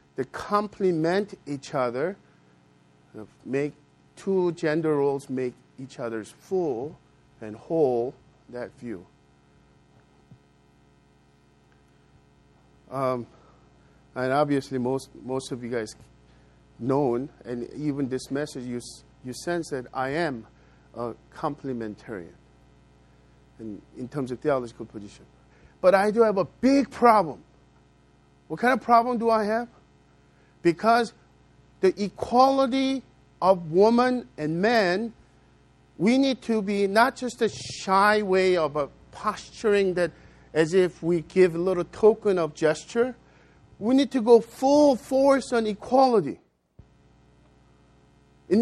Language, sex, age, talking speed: English, male, 50-69, 115 wpm